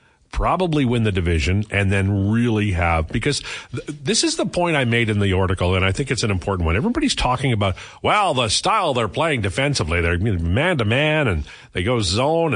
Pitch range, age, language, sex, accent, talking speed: 95-135 Hz, 40-59, English, male, American, 190 wpm